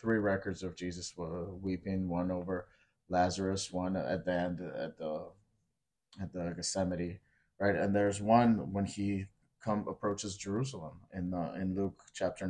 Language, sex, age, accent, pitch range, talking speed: English, male, 30-49, American, 95-125 Hz, 145 wpm